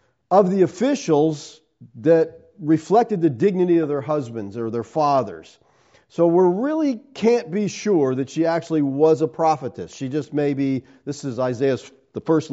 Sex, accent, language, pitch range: male, American, English, 125-175 Hz